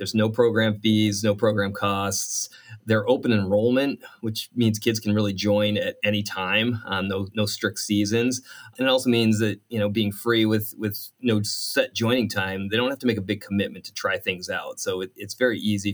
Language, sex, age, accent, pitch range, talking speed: English, male, 30-49, American, 100-115 Hz, 205 wpm